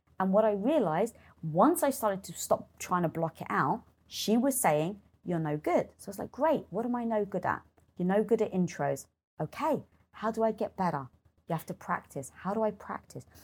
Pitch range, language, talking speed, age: 165-235 Hz, English, 225 wpm, 30-49